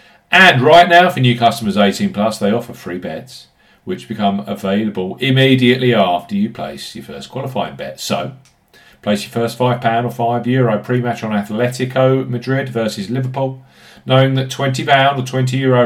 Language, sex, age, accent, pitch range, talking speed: English, male, 40-59, British, 110-135 Hz, 165 wpm